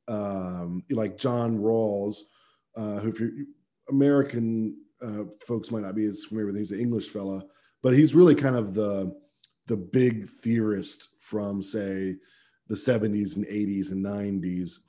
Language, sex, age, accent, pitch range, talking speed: English, male, 40-59, American, 95-115 Hz, 155 wpm